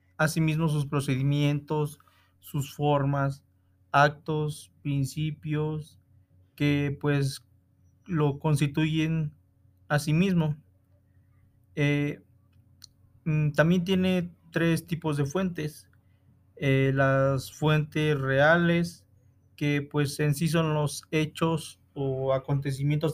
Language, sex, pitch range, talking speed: Spanish, male, 105-155 Hz, 90 wpm